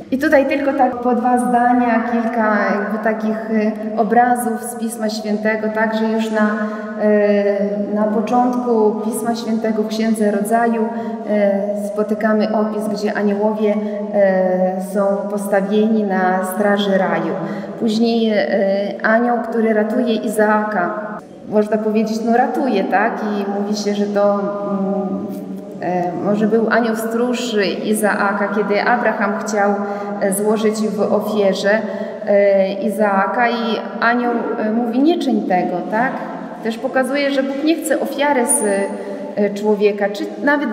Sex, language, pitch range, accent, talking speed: female, Polish, 205-230 Hz, native, 115 wpm